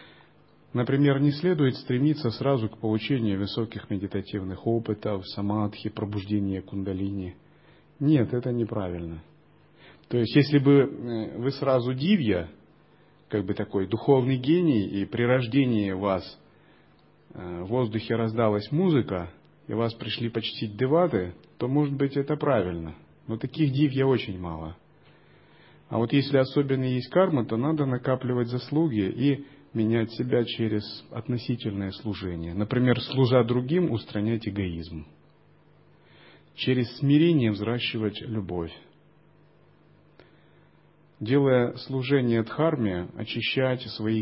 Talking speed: 110 wpm